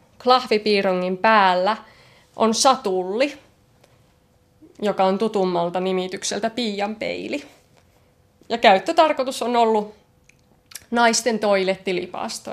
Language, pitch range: Finnish, 185-225 Hz